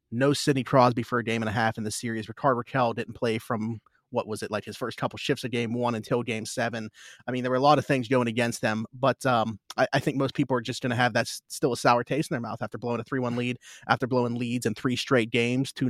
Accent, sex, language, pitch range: American, male, English, 115-130 Hz